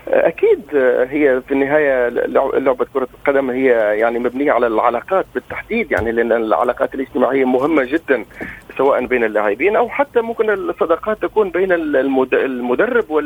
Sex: male